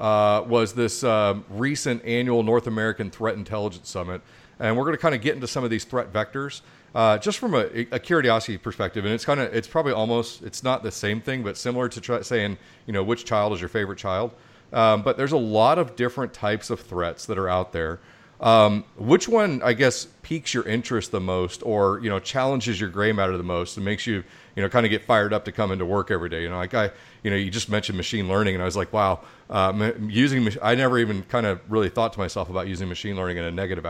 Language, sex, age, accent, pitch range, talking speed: English, male, 40-59, American, 100-120 Hz, 250 wpm